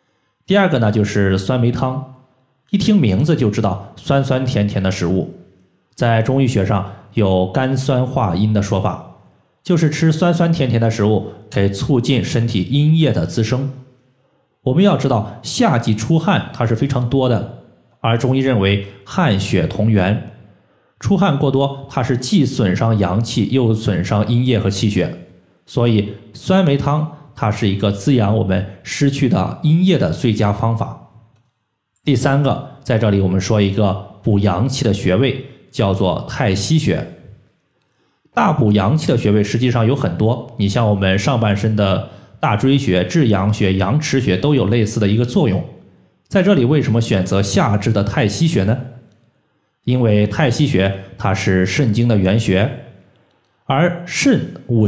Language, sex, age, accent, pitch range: Chinese, male, 20-39, native, 100-135 Hz